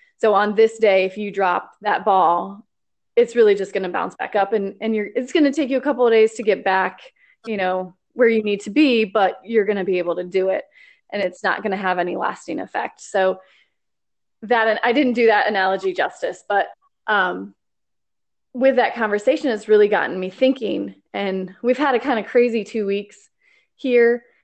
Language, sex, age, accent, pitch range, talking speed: English, female, 20-39, American, 190-225 Hz, 210 wpm